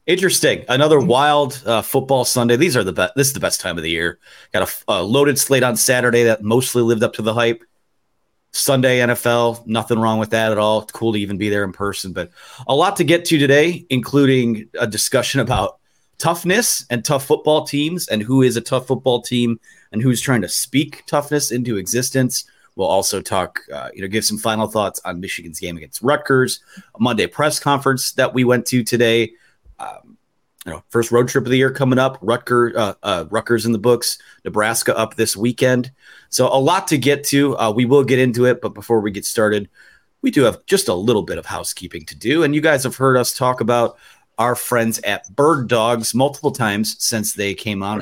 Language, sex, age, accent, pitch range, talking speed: English, male, 30-49, American, 110-135 Hz, 215 wpm